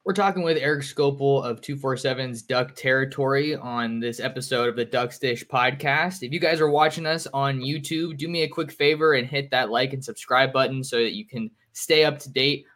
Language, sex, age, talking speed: English, male, 20-39, 210 wpm